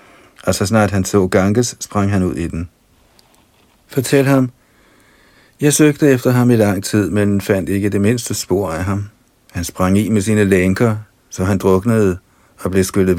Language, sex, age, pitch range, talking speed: Danish, male, 50-69, 90-110 Hz, 180 wpm